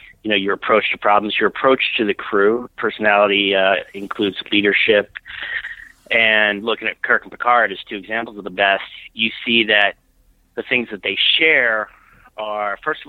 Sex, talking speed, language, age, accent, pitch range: male, 175 wpm, English, 30-49, American, 100-115 Hz